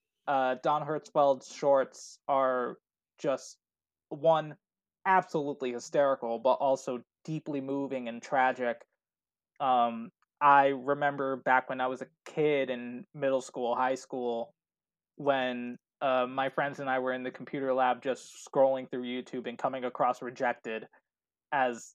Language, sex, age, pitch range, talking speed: English, male, 20-39, 130-150 Hz, 130 wpm